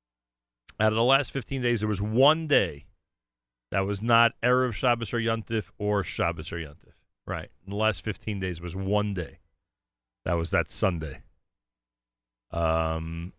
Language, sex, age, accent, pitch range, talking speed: English, male, 40-59, American, 90-130 Hz, 160 wpm